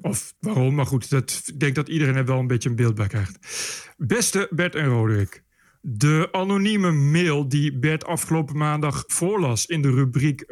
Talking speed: 175 wpm